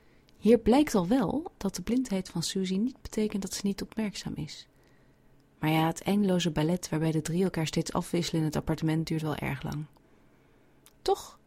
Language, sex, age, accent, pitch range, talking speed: Dutch, female, 30-49, Dutch, 155-205 Hz, 185 wpm